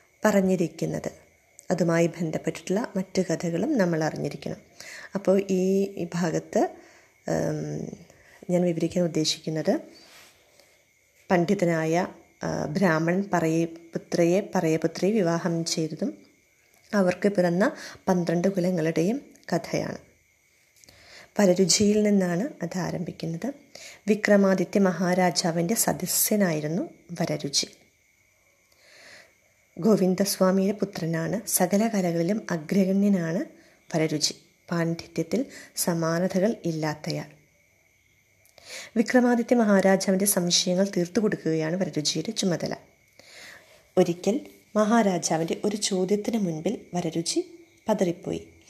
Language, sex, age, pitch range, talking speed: Malayalam, female, 20-39, 165-200 Hz, 65 wpm